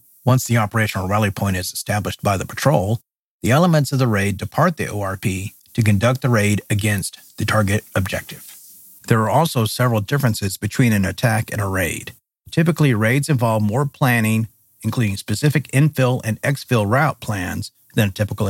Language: English